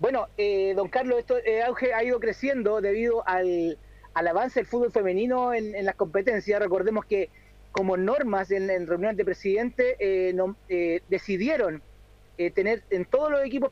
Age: 30-49